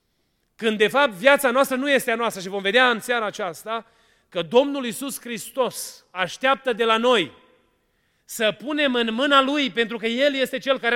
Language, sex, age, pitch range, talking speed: Romanian, male, 30-49, 195-255 Hz, 185 wpm